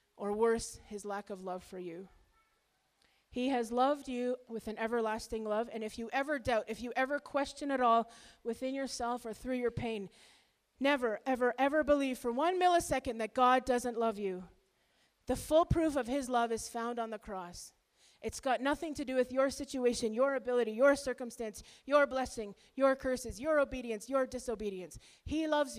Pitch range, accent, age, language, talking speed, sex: 220-275 Hz, American, 30-49, English, 180 wpm, female